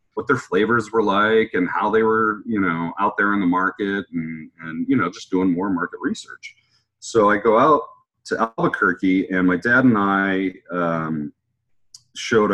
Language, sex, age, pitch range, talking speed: English, male, 30-49, 85-120 Hz, 180 wpm